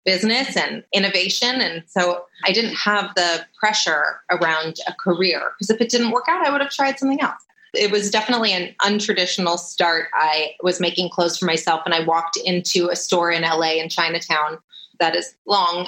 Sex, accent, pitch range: female, American, 180-250 Hz